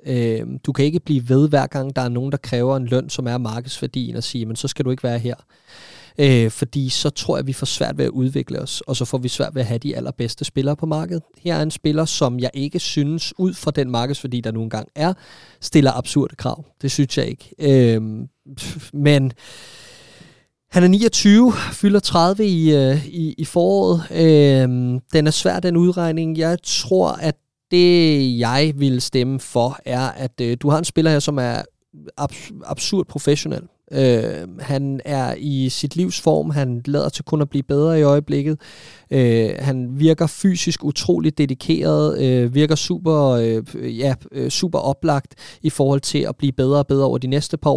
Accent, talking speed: native, 195 wpm